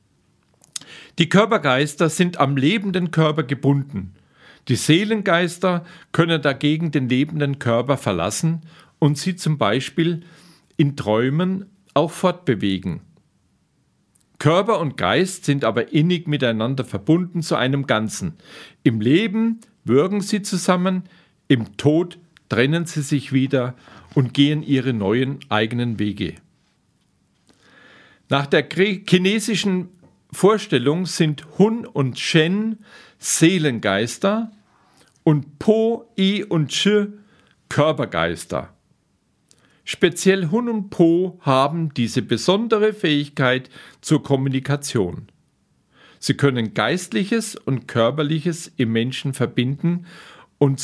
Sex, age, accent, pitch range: male, 50-69, German, 135-180 Hz